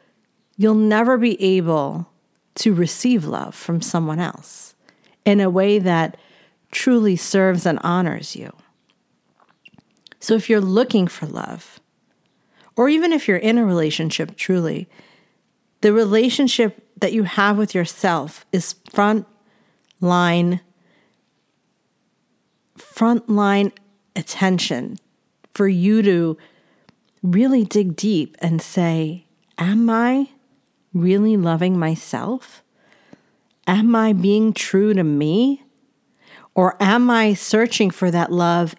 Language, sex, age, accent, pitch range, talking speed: English, female, 40-59, American, 175-225 Hz, 110 wpm